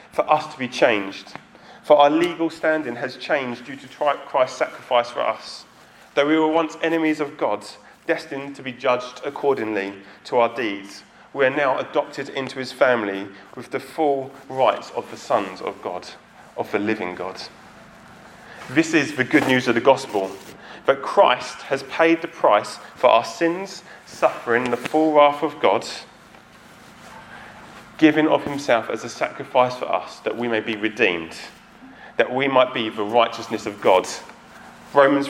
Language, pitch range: English, 120-155 Hz